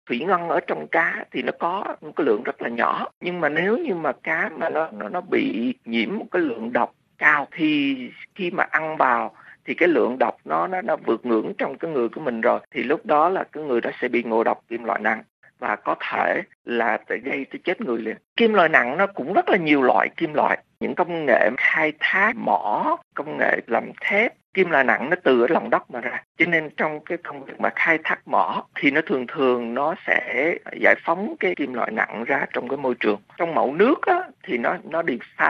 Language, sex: Vietnamese, male